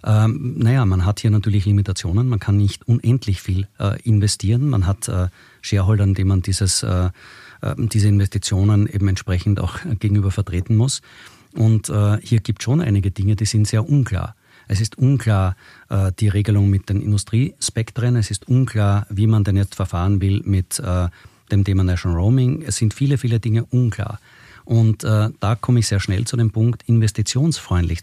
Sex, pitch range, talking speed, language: male, 100-115 Hz, 175 wpm, German